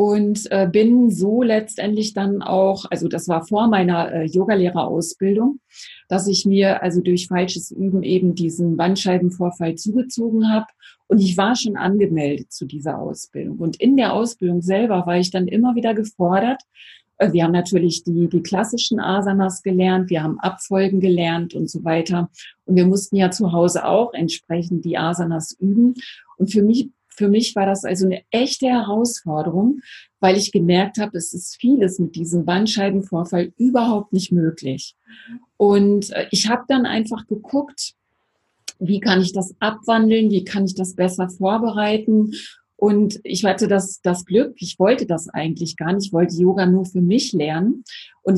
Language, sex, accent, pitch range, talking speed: German, female, German, 180-215 Hz, 160 wpm